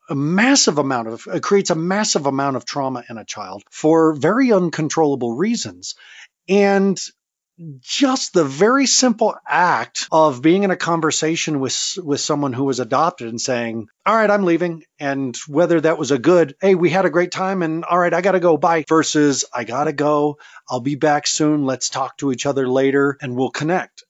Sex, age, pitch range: male, 40-59, 130-175 Hz